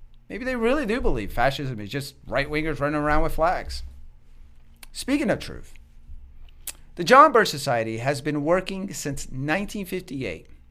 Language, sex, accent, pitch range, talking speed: English, male, American, 105-170 Hz, 140 wpm